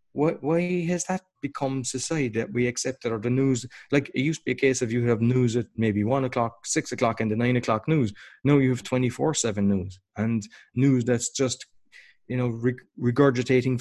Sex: male